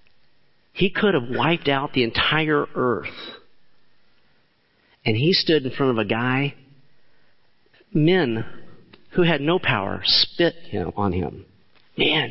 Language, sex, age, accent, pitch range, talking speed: English, male, 50-69, American, 125-180 Hz, 130 wpm